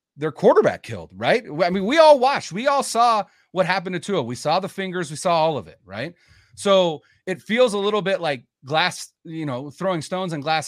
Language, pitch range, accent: English, 145-195 Hz, American